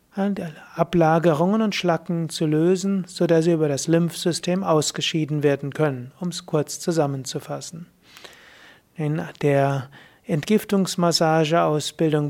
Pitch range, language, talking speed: 150-185 Hz, German, 100 wpm